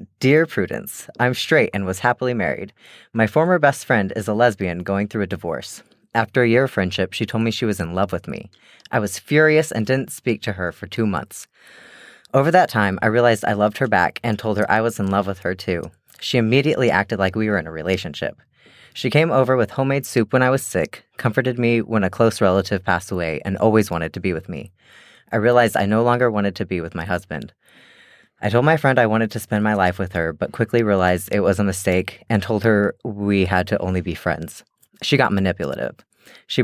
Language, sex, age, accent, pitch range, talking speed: English, female, 30-49, American, 95-120 Hz, 230 wpm